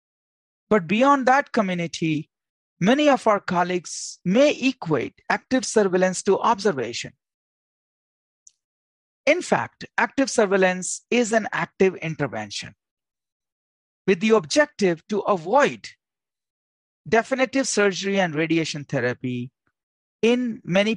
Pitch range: 160-245 Hz